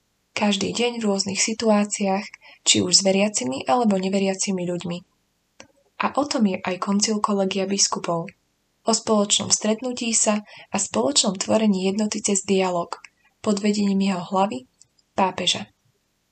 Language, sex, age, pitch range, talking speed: Slovak, female, 20-39, 190-220 Hz, 130 wpm